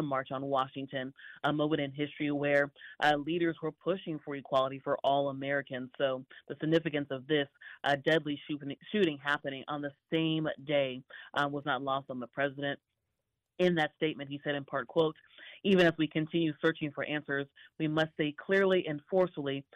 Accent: American